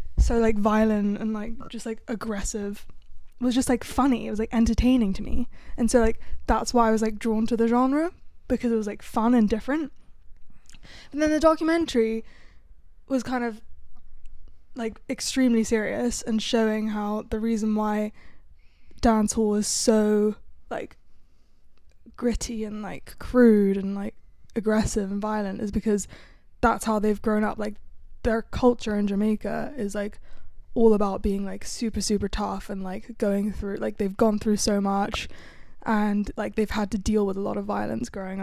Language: English